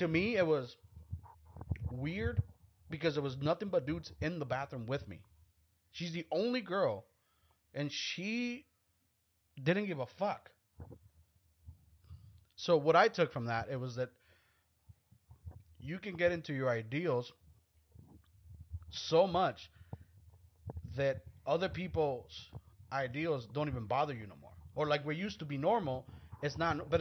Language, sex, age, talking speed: English, male, 30-49, 140 wpm